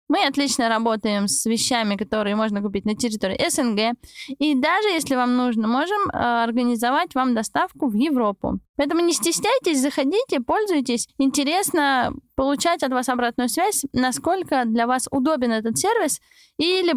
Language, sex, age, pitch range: Russian, female, 20-39, 235-315 Hz